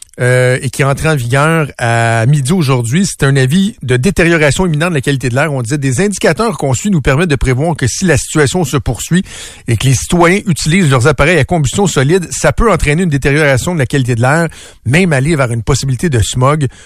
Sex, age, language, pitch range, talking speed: male, 50-69, French, 130-175 Hz, 230 wpm